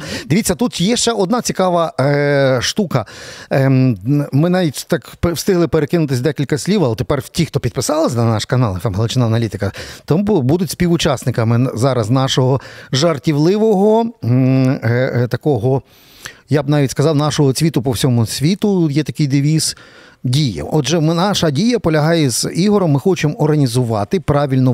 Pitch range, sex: 125-170 Hz, male